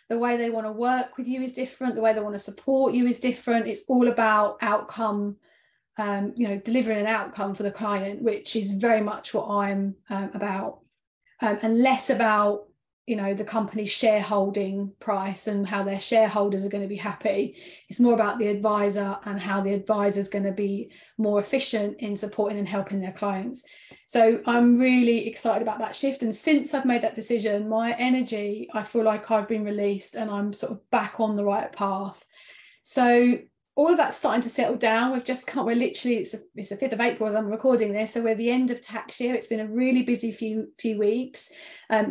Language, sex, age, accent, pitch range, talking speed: English, female, 30-49, British, 205-240 Hz, 215 wpm